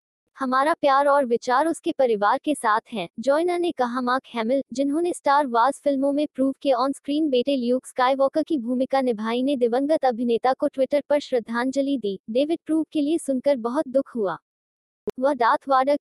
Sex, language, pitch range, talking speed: female, Hindi, 245-295 Hz, 175 wpm